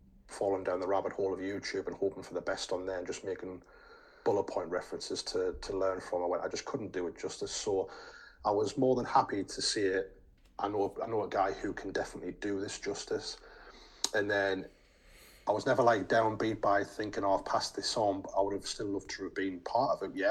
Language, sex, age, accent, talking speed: English, male, 30-49, British, 235 wpm